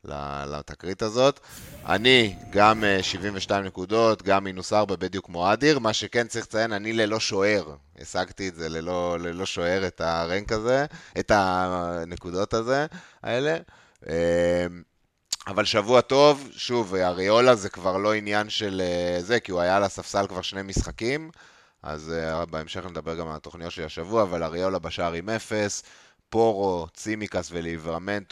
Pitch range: 85-110 Hz